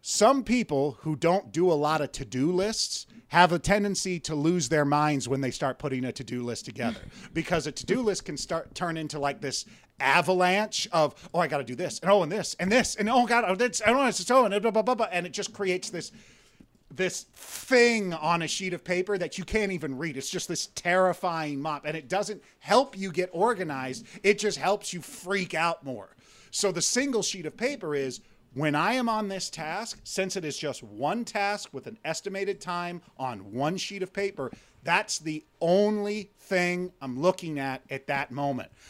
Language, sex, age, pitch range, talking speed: English, male, 30-49, 150-200 Hz, 210 wpm